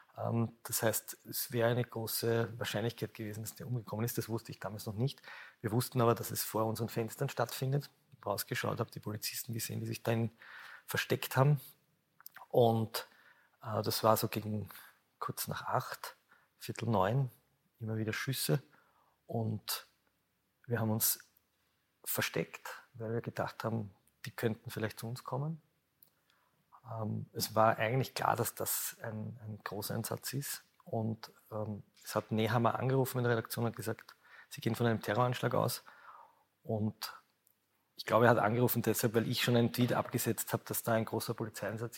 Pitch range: 110-125 Hz